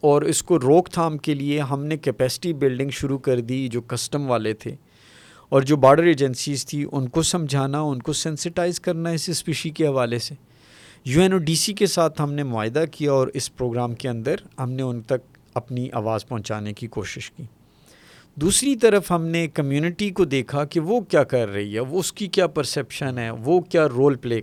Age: 50-69